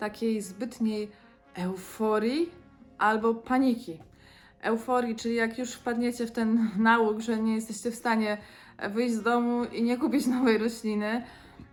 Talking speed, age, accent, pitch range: 135 wpm, 20-39, native, 210-250 Hz